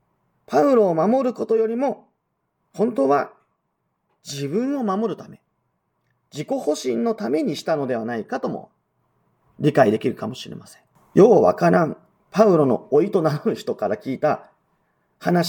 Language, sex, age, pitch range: Japanese, male, 40-59, 155-215 Hz